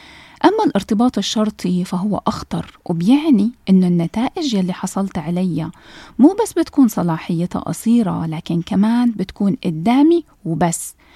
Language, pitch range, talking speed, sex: Arabic, 185-260 Hz, 115 wpm, female